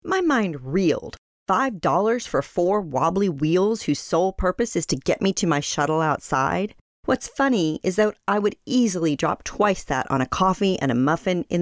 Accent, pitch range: American, 150-215 Hz